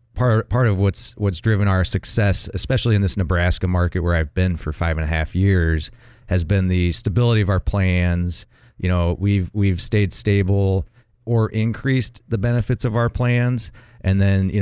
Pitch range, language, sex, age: 85-110 Hz, English, male, 30-49